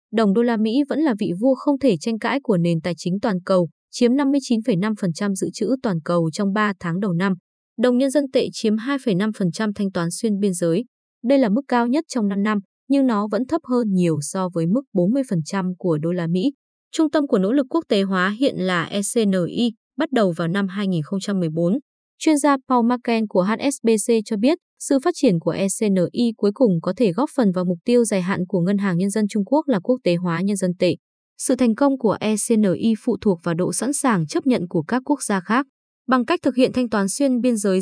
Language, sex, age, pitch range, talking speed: Vietnamese, female, 20-39, 185-255 Hz, 225 wpm